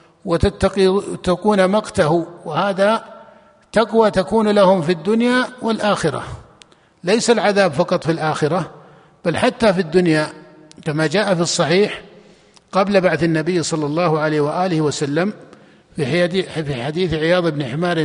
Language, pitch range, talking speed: Arabic, 165-200 Hz, 115 wpm